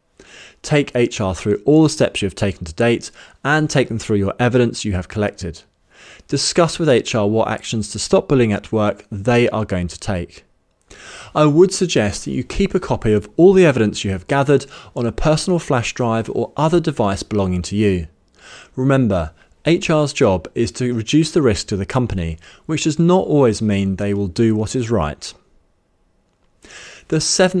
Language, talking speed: English, 185 wpm